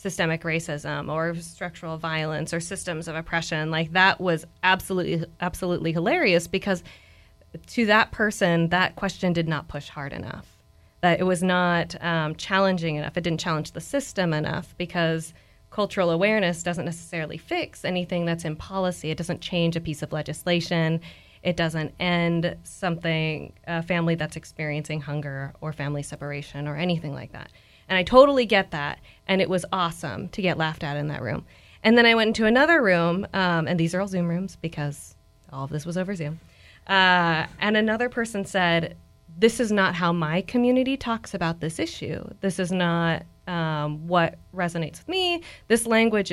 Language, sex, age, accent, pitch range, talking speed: English, female, 20-39, American, 160-195 Hz, 175 wpm